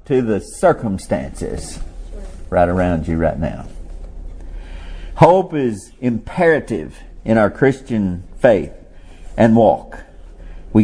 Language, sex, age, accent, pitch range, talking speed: English, male, 50-69, American, 95-155 Hz, 100 wpm